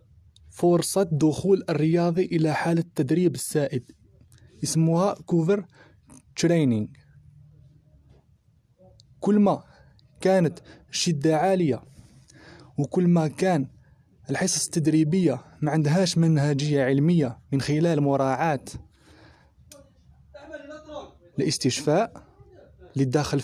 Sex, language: male, Arabic